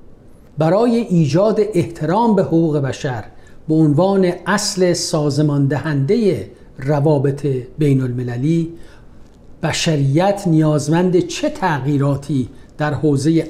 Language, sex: Persian, male